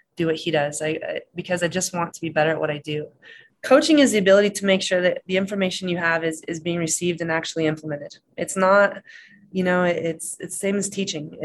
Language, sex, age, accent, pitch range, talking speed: English, female, 20-39, American, 155-180 Hz, 235 wpm